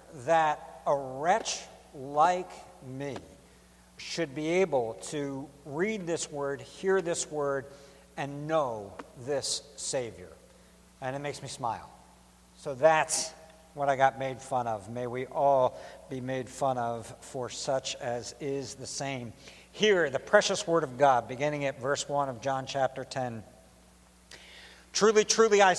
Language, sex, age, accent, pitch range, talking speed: English, male, 60-79, American, 135-200 Hz, 145 wpm